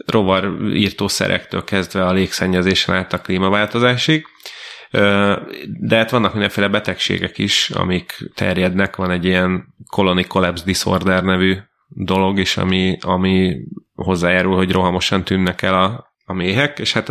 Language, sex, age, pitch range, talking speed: Hungarian, male, 30-49, 90-100 Hz, 125 wpm